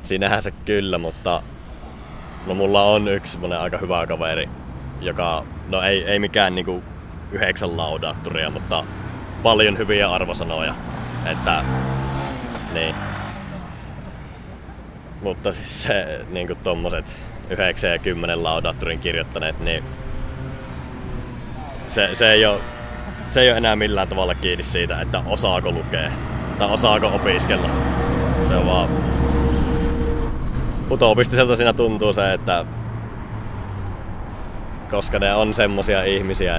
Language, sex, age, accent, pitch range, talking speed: Finnish, male, 20-39, native, 75-100 Hz, 110 wpm